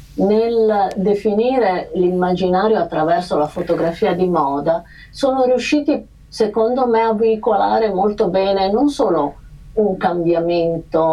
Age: 50-69